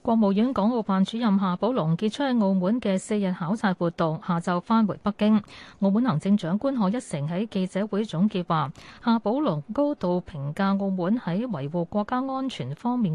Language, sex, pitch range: Chinese, female, 170-225 Hz